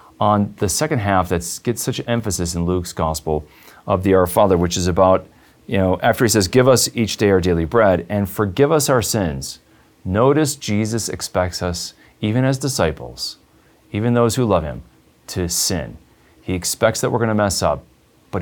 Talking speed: 190 wpm